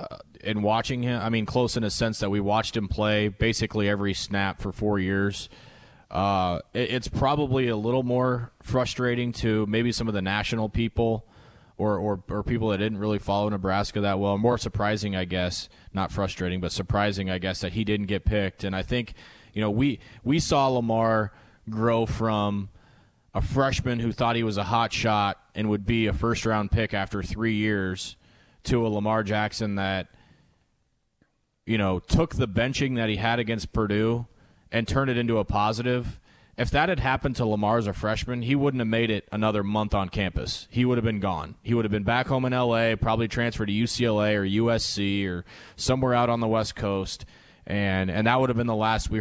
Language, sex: English, male